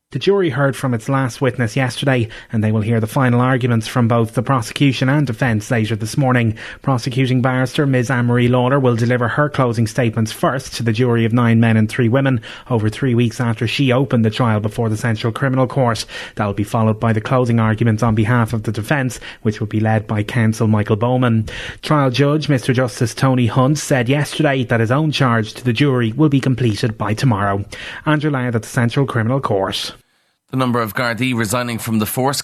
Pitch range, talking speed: 105-125 Hz, 210 wpm